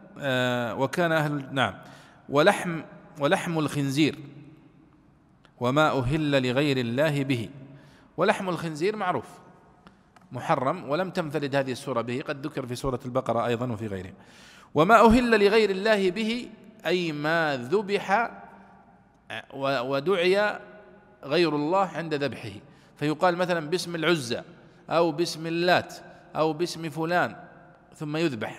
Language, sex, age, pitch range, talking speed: Arabic, male, 50-69, 145-185 Hz, 115 wpm